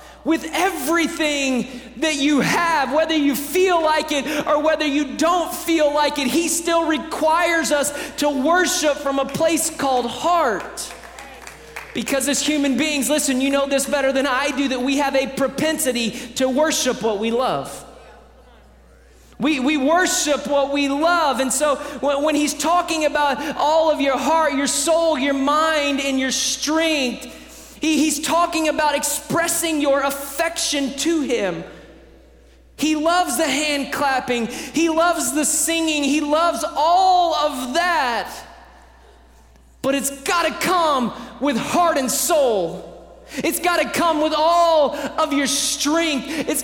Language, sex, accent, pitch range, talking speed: English, male, American, 275-325 Hz, 145 wpm